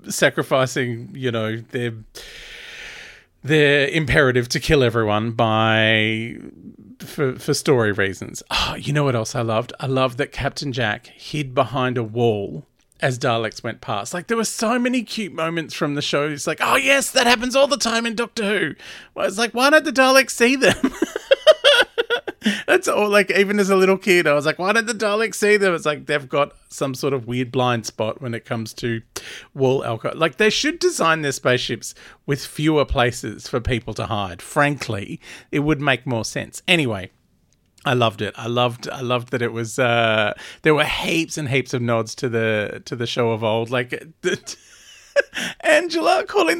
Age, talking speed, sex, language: 40-59, 190 wpm, male, English